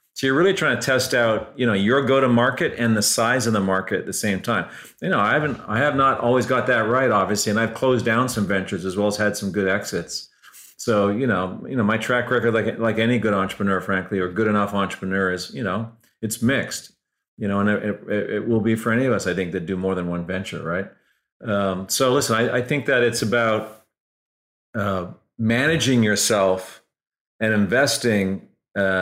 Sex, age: male, 40-59